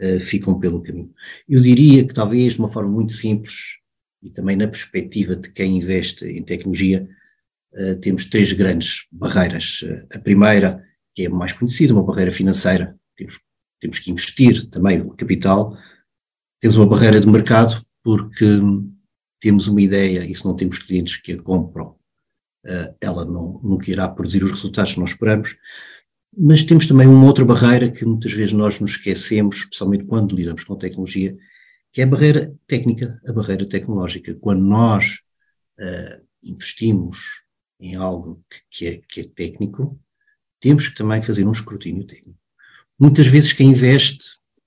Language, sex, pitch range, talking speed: English, male, 95-115 Hz, 160 wpm